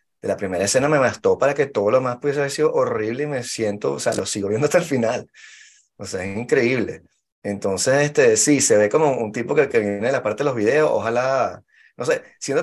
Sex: male